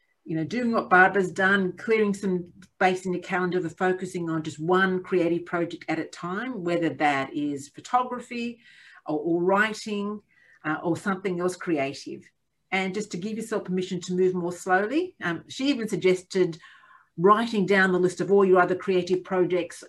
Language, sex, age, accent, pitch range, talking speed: English, female, 50-69, Australian, 160-195 Hz, 175 wpm